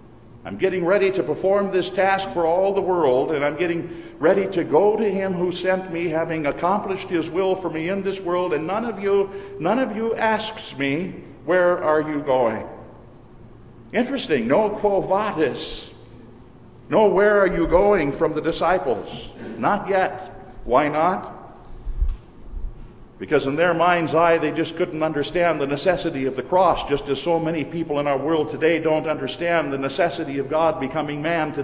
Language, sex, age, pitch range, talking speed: English, male, 50-69, 140-185 Hz, 175 wpm